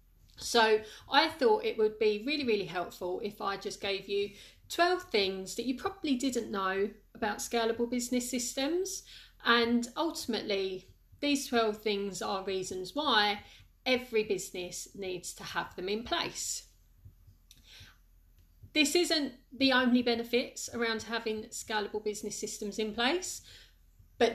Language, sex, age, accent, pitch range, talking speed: English, female, 40-59, British, 195-255 Hz, 135 wpm